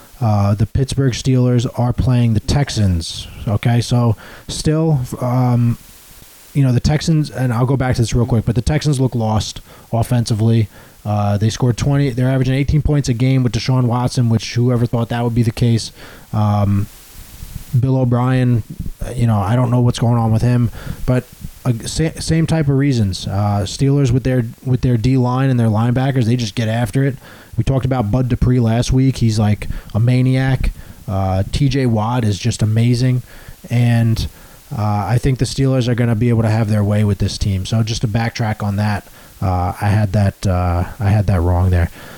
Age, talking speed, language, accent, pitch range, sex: 20-39, 195 wpm, English, American, 105-130 Hz, male